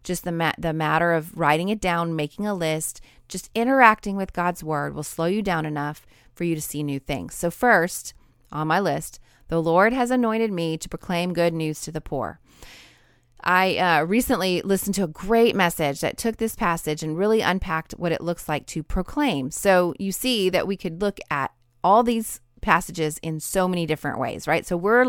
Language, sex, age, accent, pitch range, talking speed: English, female, 30-49, American, 160-205 Hz, 205 wpm